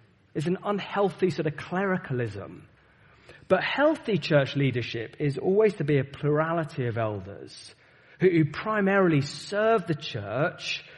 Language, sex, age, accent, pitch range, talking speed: English, male, 30-49, British, 115-155 Hz, 125 wpm